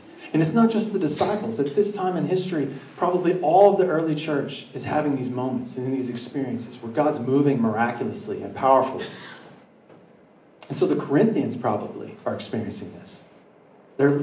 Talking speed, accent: 165 wpm, American